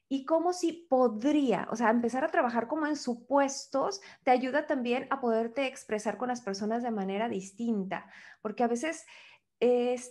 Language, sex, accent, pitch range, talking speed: Spanish, female, Mexican, 215-280 Hz, 165 wpm